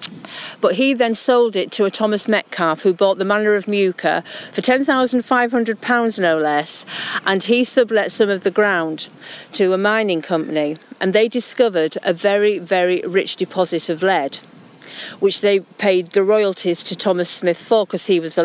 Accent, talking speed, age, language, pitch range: British, 170 wpm, 50-69, English, 185-225 Hz